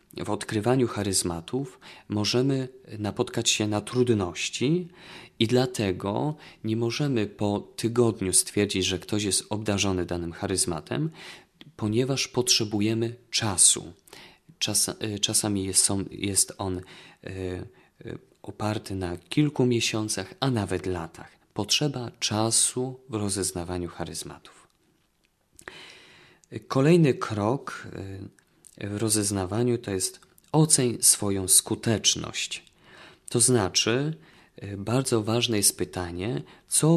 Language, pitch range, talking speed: Polish, 95-125 Hz, 90 wpm